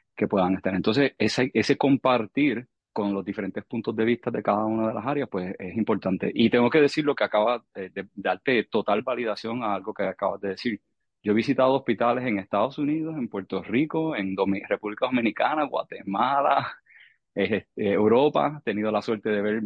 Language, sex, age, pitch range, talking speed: English, male, 30-49, 100-135 Hz, 195 wpm